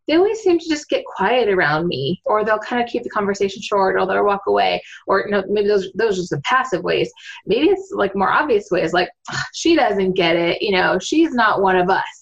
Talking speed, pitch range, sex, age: 230 wpm, 190-300 Hz, female, 20-39